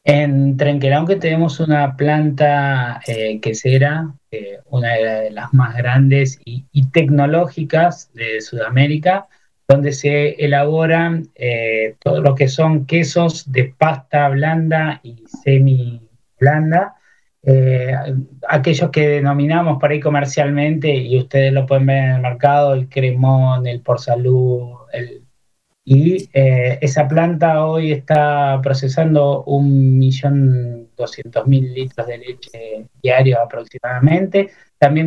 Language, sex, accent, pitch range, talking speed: Spanish, male, Argentinian, 130-155 Hz, 120 wpm